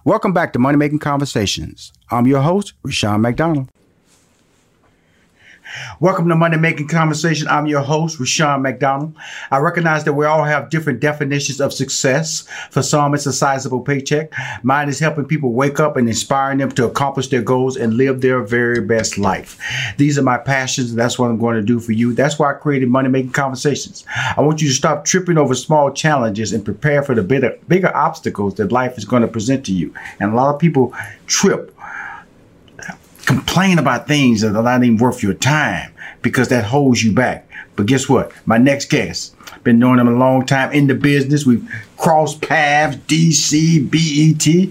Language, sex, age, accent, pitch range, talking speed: English, male, 40-59, American, 125-160 Hz, 185 wpm